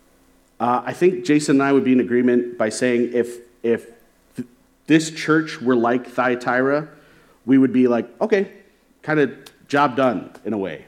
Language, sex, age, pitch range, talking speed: English, male, 40-59, 115-155 Hz, 175 wpm